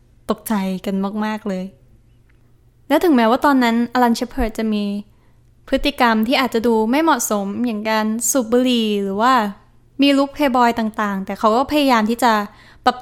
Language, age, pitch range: Thai, 10-29, 205-245 Hz